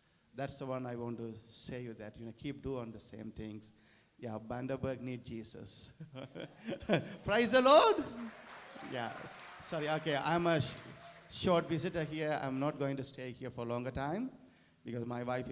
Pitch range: 115-135 Hz